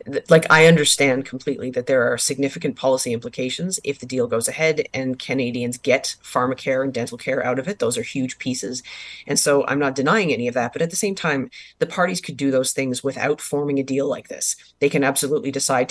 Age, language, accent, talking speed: 30-49, English, American, 220 wpm